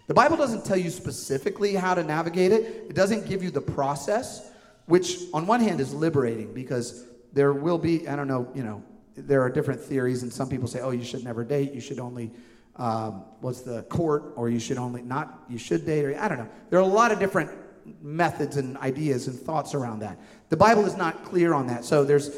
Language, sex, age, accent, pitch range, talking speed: English, male, 40-59, American, 130-195 Hz, 230 wpm